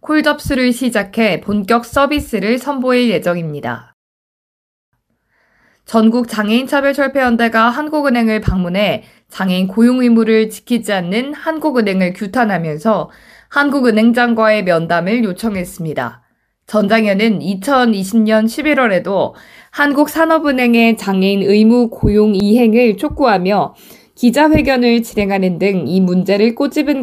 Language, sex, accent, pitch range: Korean, female, native, 200-250 Hz